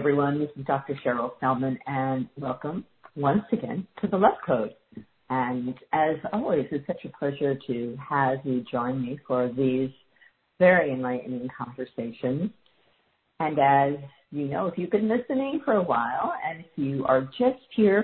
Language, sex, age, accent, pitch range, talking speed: English, female, 50-69, American, 130-180 Hz, 160 wpm